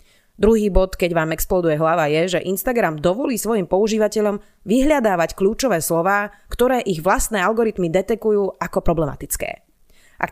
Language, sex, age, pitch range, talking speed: Slovak, female, 30-49, 165-210 Hz, 135 wpm